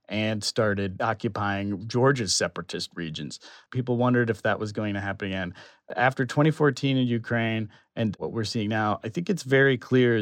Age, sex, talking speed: 40-59, male, 170 wpm